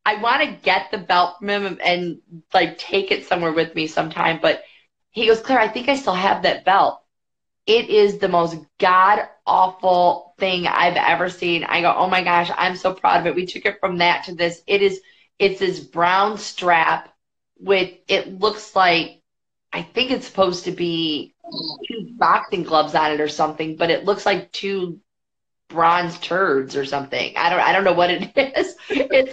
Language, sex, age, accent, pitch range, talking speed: English, female, 20-39, American, 175-225 Hz, 190 wpm